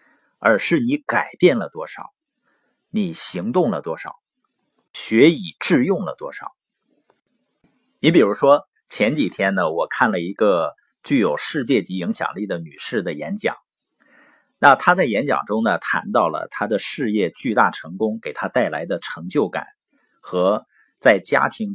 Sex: male